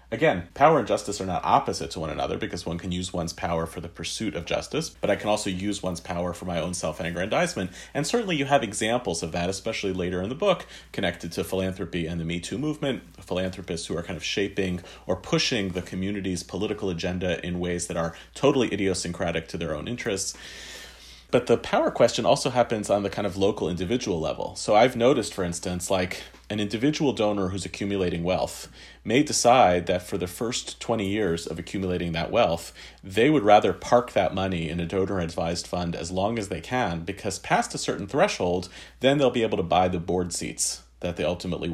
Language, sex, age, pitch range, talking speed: English, male, 40-59, 85-105 Hz, 205 wpm